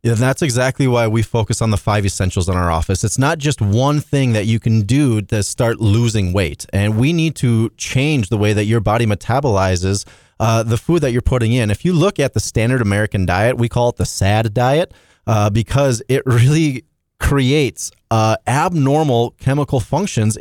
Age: 30-49